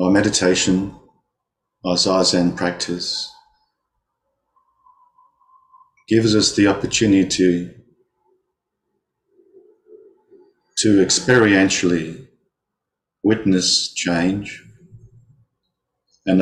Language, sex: English, male